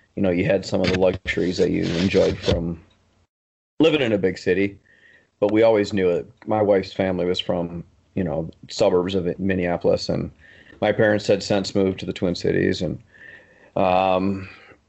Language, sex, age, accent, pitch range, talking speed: English, male, 40-59, American, 95-105 Hz, 175 wpm